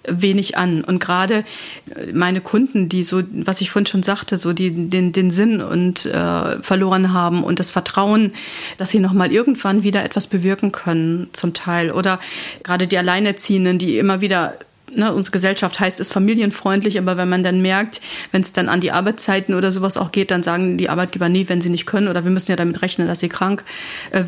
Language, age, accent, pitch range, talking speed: German, 40-59, German, 180-205 Hz, 205 wpm